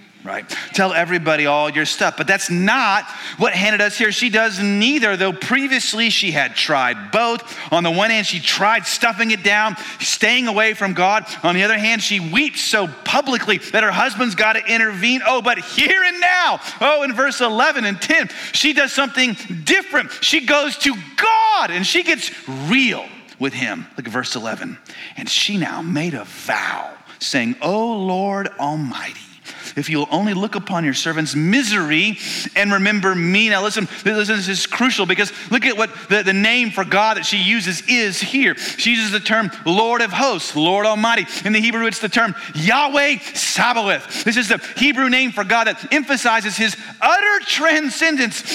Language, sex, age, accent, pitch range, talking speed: English, male, 40-59, American, 195-255 Hz, 185 wpm